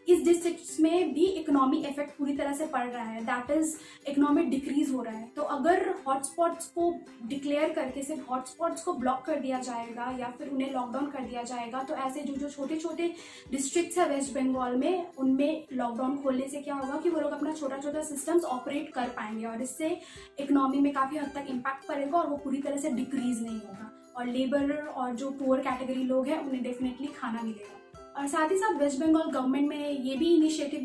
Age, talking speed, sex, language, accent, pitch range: 20-39, 205 wpm, female, Hindi, native, 260-310 Hz